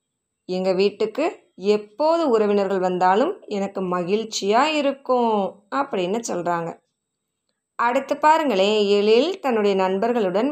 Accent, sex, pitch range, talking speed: native, female, 205-290 Hz, 85 wpm